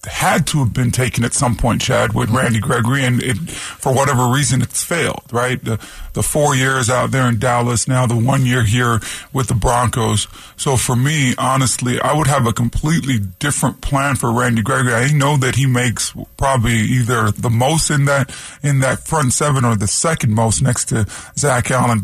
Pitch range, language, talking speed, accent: 120-145 Hz, English, 195 wpm, American